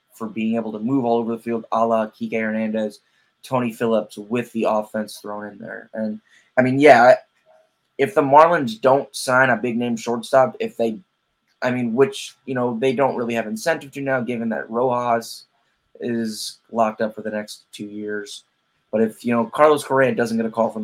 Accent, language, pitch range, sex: American, English, 110-135 Hz, male